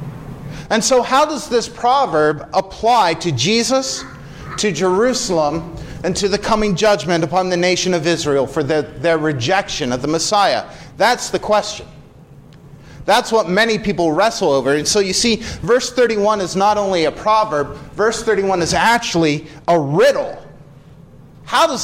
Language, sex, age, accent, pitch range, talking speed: English, male, 40-59, American, 155-210 Hz, 150 wpm